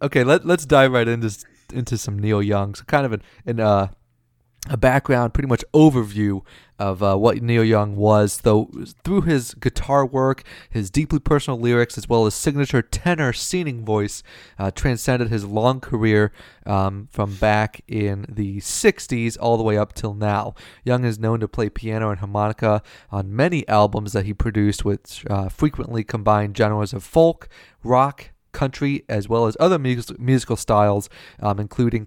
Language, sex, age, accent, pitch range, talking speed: English, male, 30-49, American, 100-125 Hz, 170 wpm